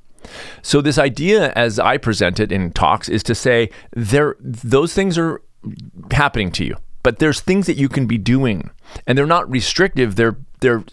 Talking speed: 180 wpm